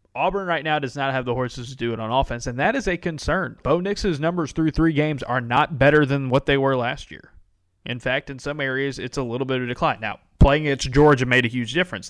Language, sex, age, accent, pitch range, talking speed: English, male, 20-39, American, 115-140 Hz, 265 wpm